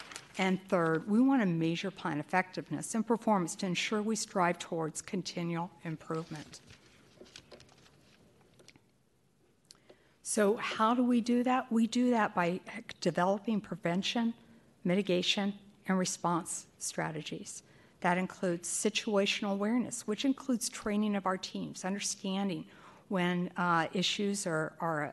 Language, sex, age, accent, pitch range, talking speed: English, female, 60-79, American, 170-215 Hz, 115 wpm